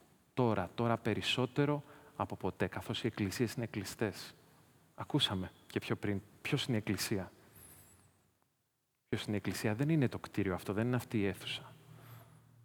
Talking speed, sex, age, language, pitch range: 150 wpm, male, 30-49, Greek, 105-135 Hz